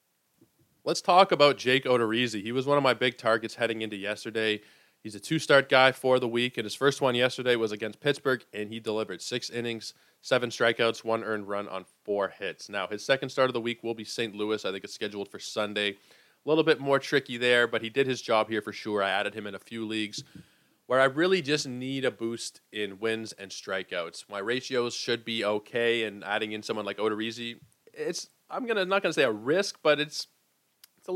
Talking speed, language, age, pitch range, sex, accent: 220 wpm, English, 20-39, 110-135 Hz, male, American